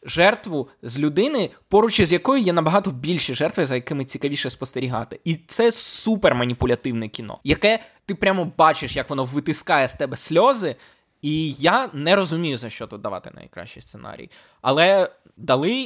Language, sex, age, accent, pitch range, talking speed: Ukrainian, male, 20-39, native, 120-155 Hz, 150 wpm